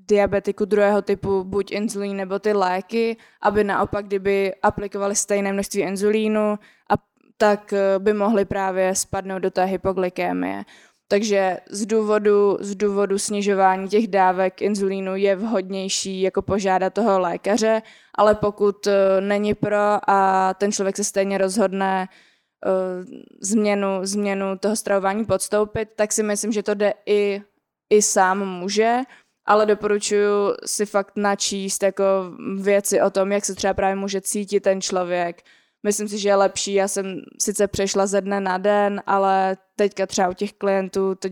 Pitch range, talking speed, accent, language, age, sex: 190-205 Hz, 150 wpm, native, Czech, 20-39, female